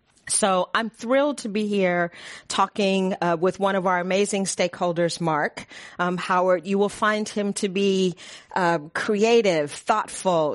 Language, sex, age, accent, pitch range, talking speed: English, female, 40-59, American, 175-215 Hz, 150 wpm